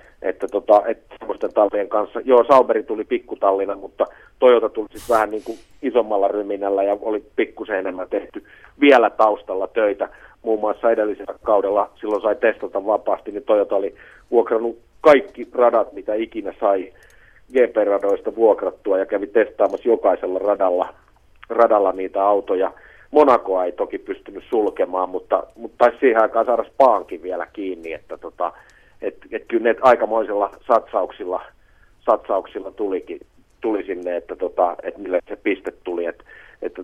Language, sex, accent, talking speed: Finnish, male, native, 145 wpm